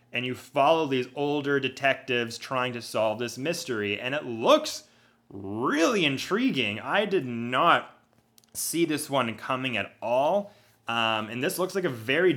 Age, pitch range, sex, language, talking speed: 30-49, 115-145 Hz, male, English, 155 wpm